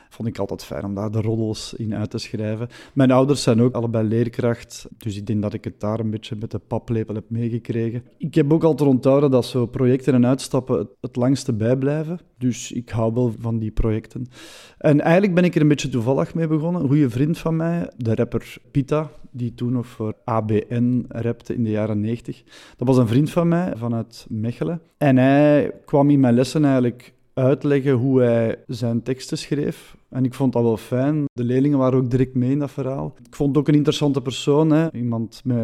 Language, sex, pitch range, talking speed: Dutch, male, 115-140 Hz, 215 wpm